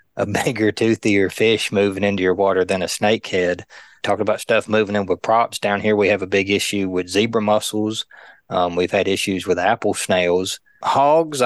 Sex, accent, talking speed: male, American, 190 wpm